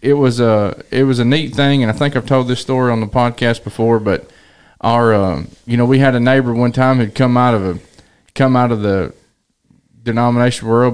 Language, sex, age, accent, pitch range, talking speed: English, male, 20-39, American, 110-135 Hz, 225 wpm